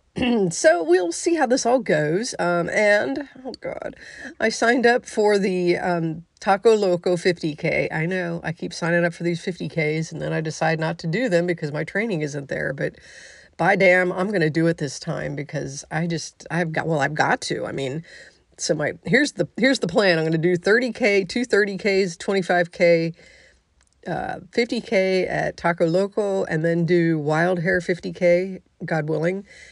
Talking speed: 185 wpm